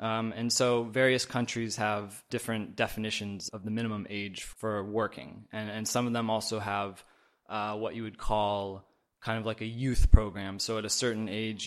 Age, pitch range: 20-39, 105-120 Hz